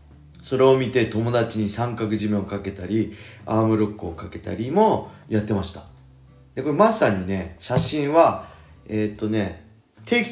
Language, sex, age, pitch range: Japanese, male, 40-59, 95-115 Hz